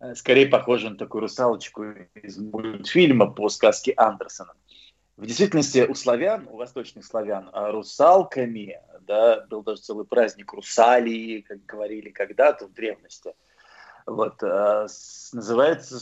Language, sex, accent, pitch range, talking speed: Russian, male, native, 115-165 Hz, 110 wpm